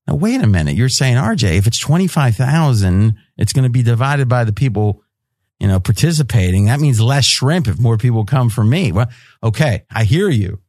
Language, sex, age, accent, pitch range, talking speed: English, male, 40-59, American, 115-155 Hz, 200 wpm